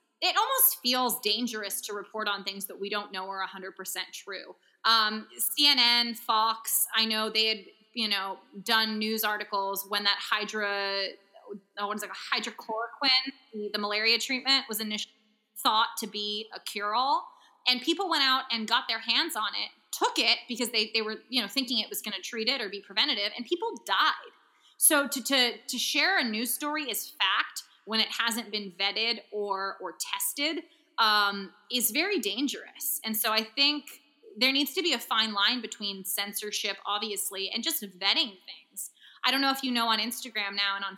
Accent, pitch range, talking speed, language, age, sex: American, 205-250 Hz, 185 wpm, English, 20-39, female